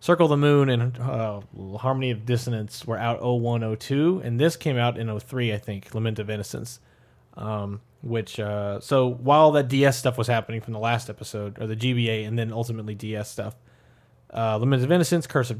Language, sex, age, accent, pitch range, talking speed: English, male, 30-49, American, 110-130 Hz, 205 wpm